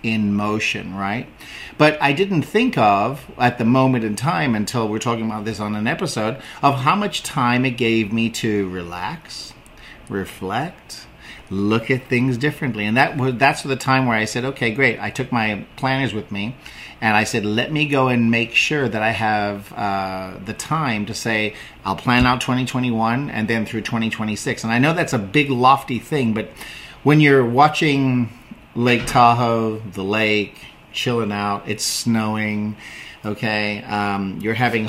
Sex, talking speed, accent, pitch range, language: male, 175 wpm, American, 105-130 Hz, English